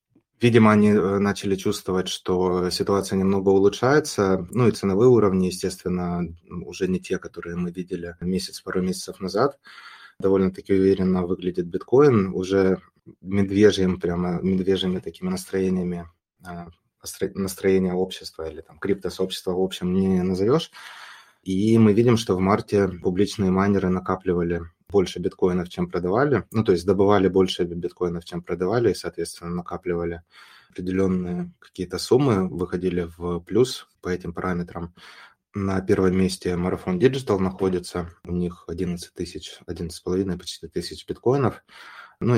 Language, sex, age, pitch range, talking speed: Russian, male, 20-39, 90-95 Hz, 125 wpm